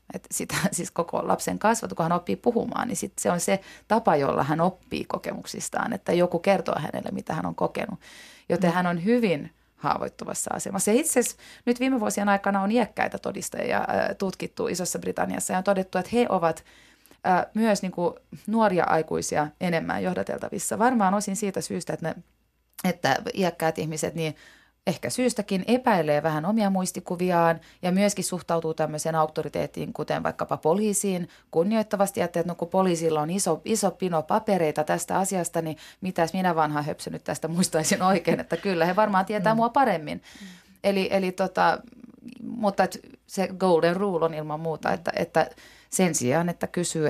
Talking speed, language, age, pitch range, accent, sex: 155 wpm, Finnish, 30-49, 160-200 Hz, native, female